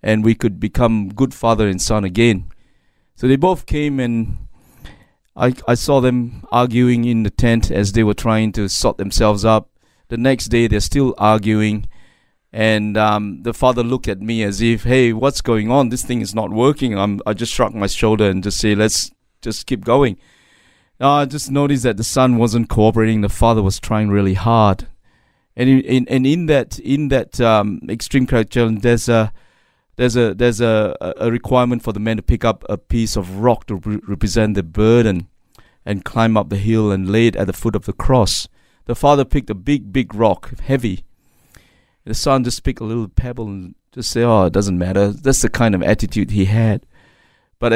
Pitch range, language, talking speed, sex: 105-120 Hz, English, 200 wpm, male